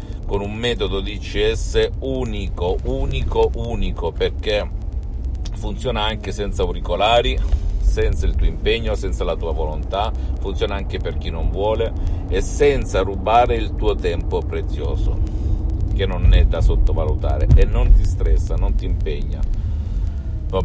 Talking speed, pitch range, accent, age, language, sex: 135 wpm, 85-105 Hz, native, 50-69, Italian, male